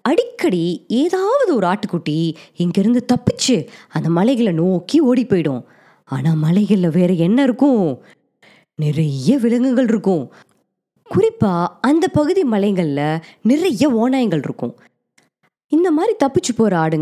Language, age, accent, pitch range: Tamil, 20-39, native, 175-285 Hz